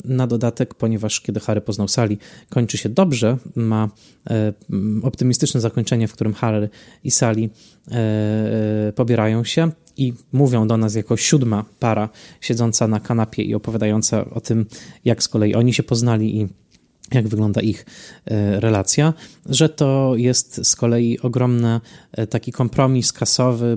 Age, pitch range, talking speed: 20-39, 110-130 Hz, 140 wpm